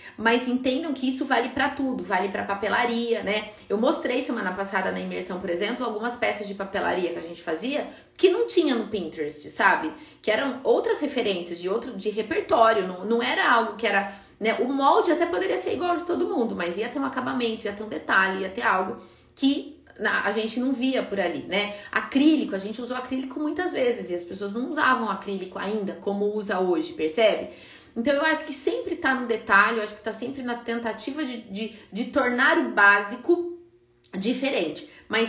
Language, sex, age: Portuguese, female, 30-49